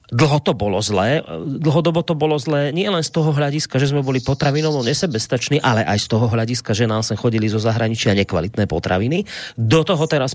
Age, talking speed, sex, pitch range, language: 30-49, 195 wpm, male, 110-145 Hz, Slovak